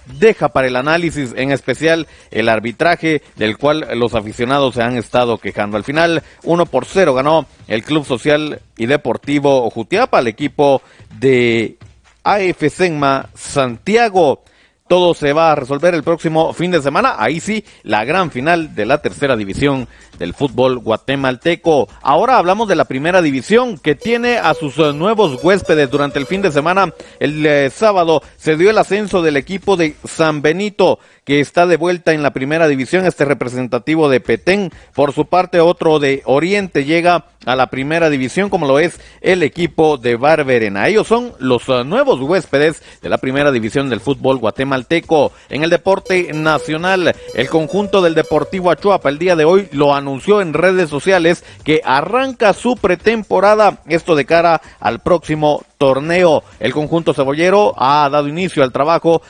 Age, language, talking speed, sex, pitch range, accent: 40-59, Spanish, 165 wpm, male, 135-170 Hz, Mexican